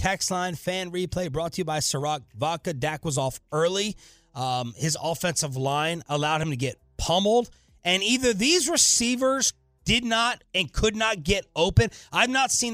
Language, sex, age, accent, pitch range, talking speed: English, male, 30-49, American, 140-200 Hz, 175 wpm